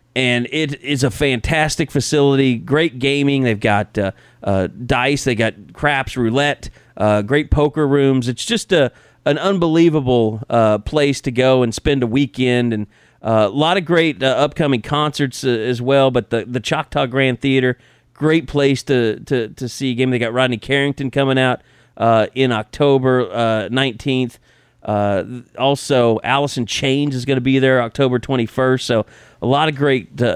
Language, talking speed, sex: English, 170 wpm, male